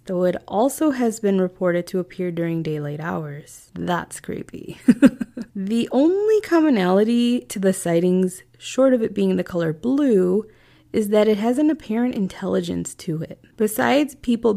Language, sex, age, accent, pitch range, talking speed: English, female, 20-39, American, 170-220 Hz, 150 wpm